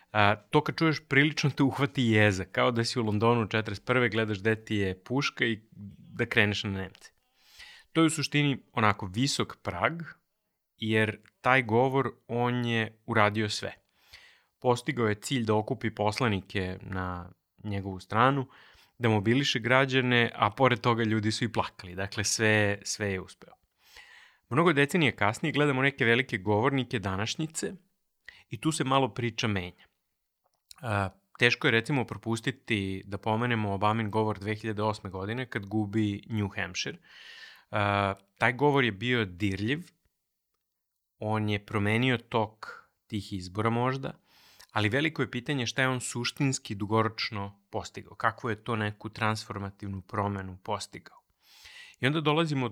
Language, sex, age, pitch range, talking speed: English, male, 30-49, 105-130 Hz, 140 wpm